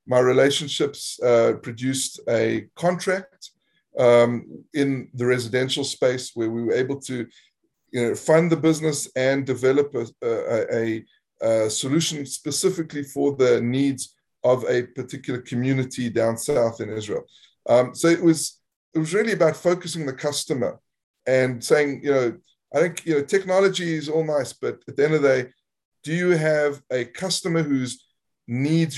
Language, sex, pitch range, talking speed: English, male, 125-150 Hz, 155 wpm